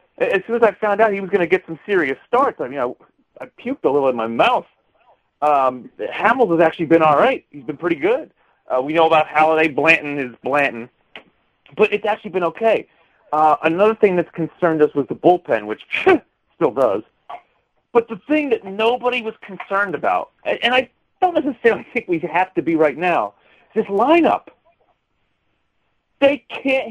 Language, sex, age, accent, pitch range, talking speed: English, male, 40-59, American, 150-220 Hz, 185 wpm